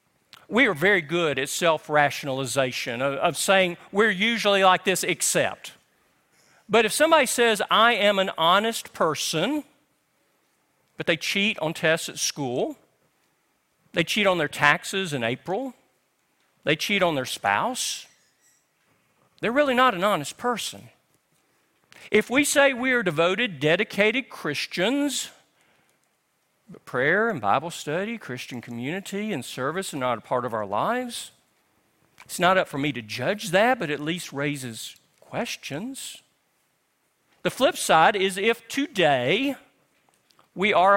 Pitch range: 150-225 Hz